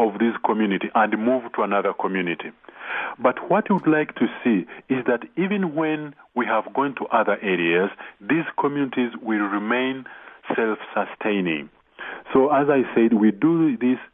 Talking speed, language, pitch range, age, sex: 155 wpm, English, 110-150 Hz, 40-59, male